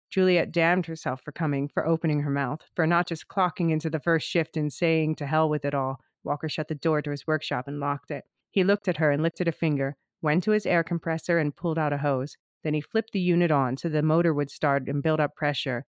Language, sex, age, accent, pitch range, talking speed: English, female, 30-49, American, 150-175 Hz, 250 wpm